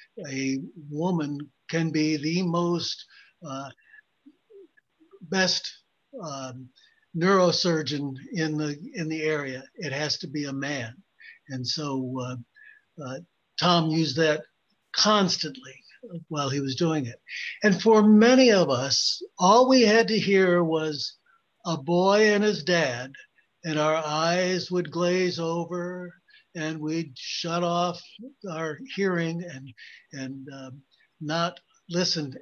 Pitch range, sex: 145-190 Hz, male